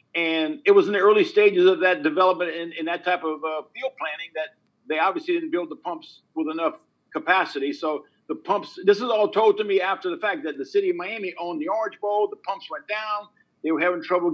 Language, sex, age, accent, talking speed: English, male, 50-69, American, 230 wpm